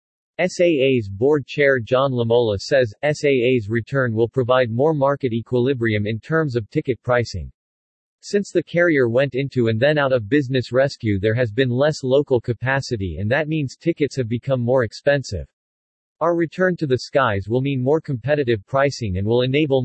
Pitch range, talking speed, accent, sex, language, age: 115-150 Hz, 170 wpm, American, male, English, 40-59